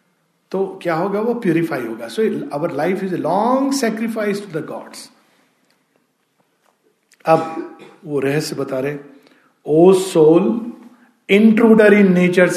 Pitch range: 160-225 Hz